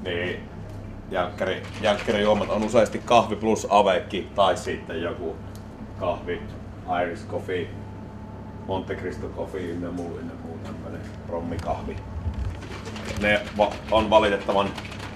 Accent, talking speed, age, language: native, 95 wpm, 30-49, Finnish